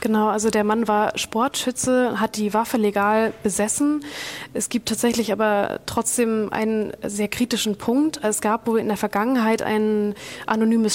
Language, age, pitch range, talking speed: German, 20-39, 205-220 Hz, 155 wpm